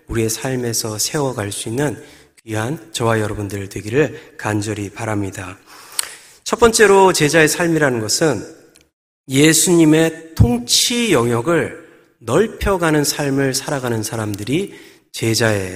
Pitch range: 115-175 Hz